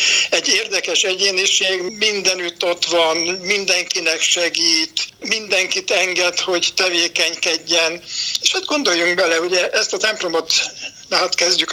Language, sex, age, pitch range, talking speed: Hungarian, male, 60-79, 170-195 Hz, 115 wpm